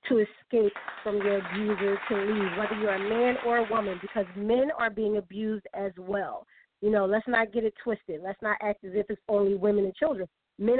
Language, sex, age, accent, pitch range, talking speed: English, female, 30-49, American, 200-235 Hz, 215 wpm